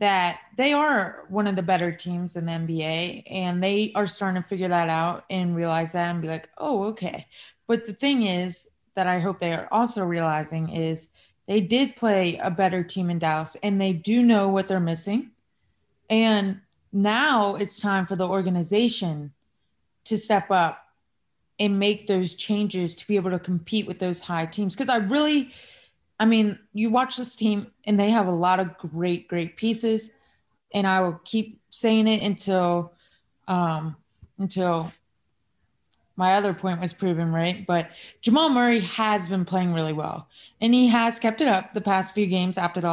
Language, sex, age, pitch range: English, female, 20-39, 175-220 Hz